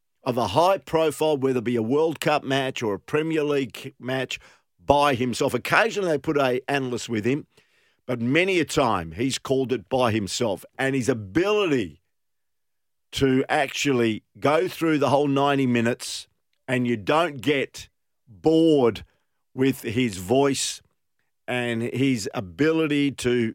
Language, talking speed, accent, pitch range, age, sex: English, 145 wpm, Australian, 120-145 Hz, 50-69, male